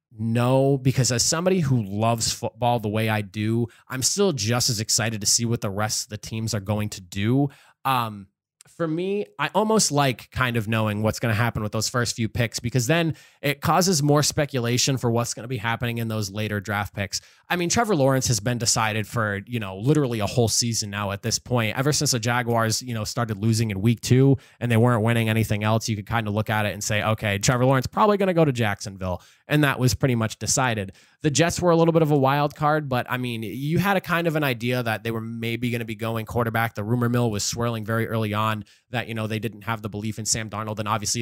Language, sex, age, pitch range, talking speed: English, male, 20-39, 110-130 Hz, 250 wpm